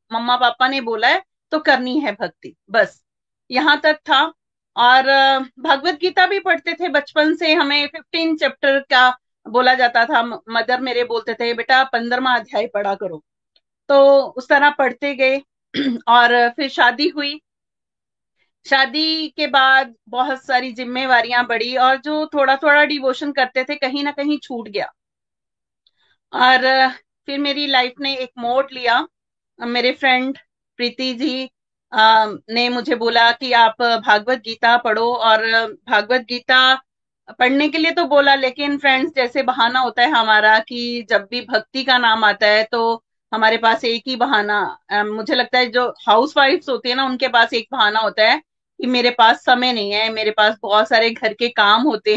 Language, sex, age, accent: Hindi, female, 40-59, native